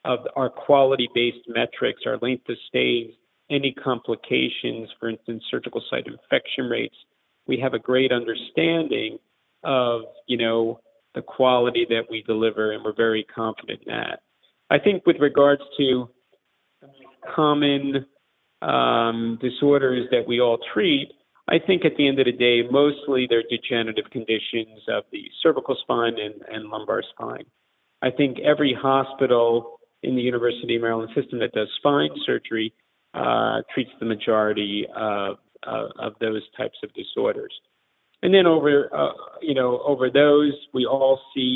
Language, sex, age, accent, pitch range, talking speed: English, male, 40-59, American, 115-140 Hz, 150 wpm